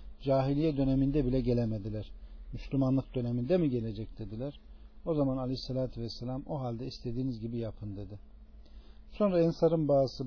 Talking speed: 130 wpm